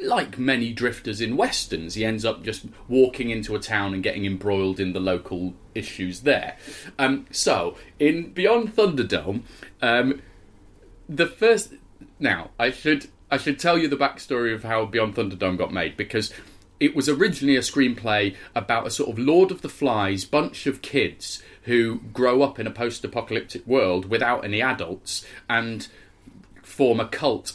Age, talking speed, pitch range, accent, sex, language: 30-49, 165 wpm, 100-140 Hz, British, male, English